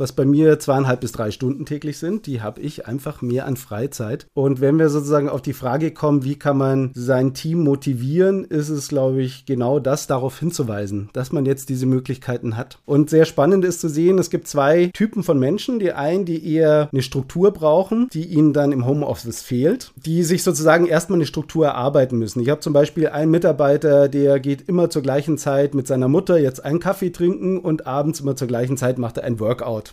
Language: English